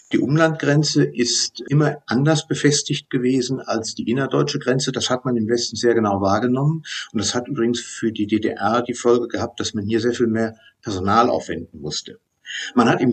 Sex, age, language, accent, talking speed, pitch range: male, 50-69, German, German, 190 wpm, 110-140 Hz